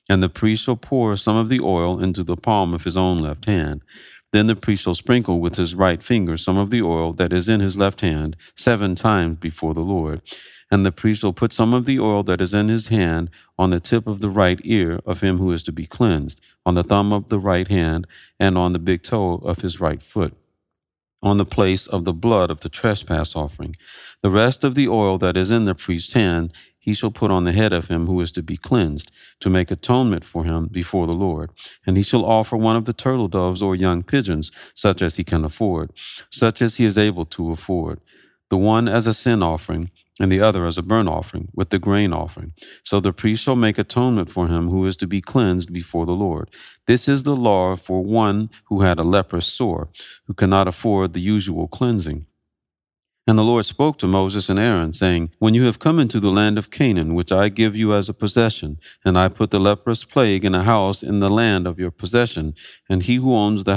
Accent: American